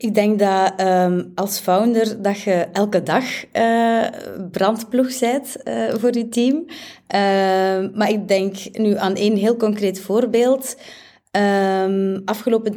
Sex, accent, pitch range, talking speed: female, Dutch, 170-210 Hz, 115 wpm